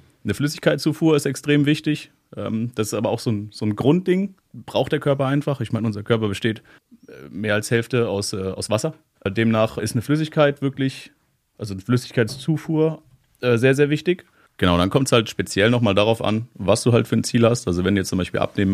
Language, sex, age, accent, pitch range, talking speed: German, male, 30-49, German, 95-125 Hz, 210 wpm